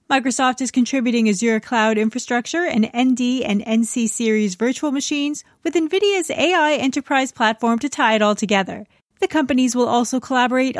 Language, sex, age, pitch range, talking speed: English, female, 30-49, 220-290 Hz, 155 wpm